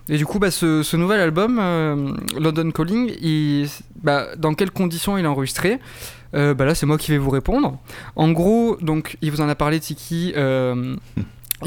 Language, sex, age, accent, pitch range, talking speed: French, male, 20-39, French, 140-175 Hz, 195 wpm